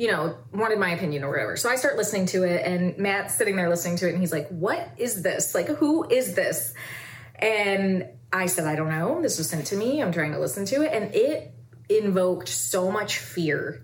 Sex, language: female, English